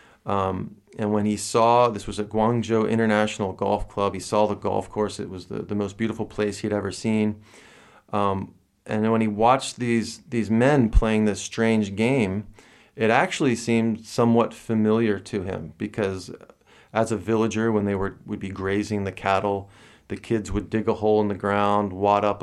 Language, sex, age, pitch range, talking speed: English, male, 40-59, 100-115 Hz, 185 wpm